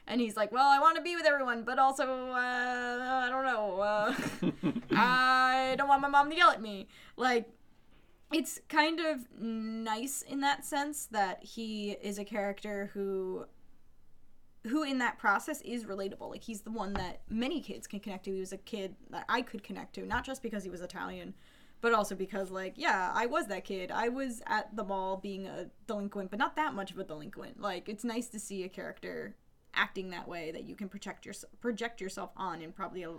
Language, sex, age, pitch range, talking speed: English, female, 10-29, 195-255 Hz, 210 wpm